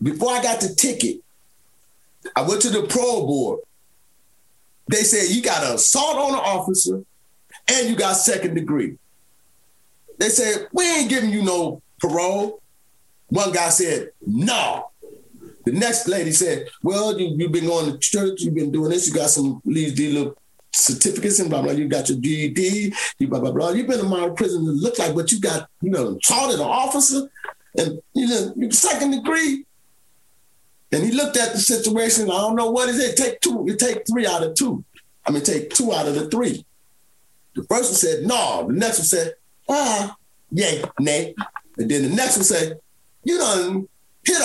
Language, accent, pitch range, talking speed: English, American, 175-275 Hz, 190 wpm